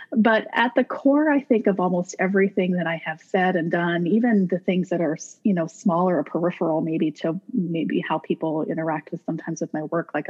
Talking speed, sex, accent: 215 wpm, female, American